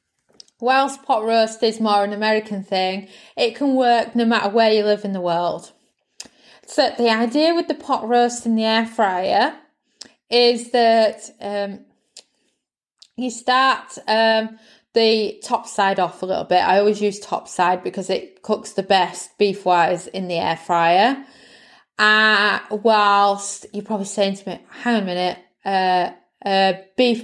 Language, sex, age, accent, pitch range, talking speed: English, female, 20-39, British, 195-235 Hz, 160 wpm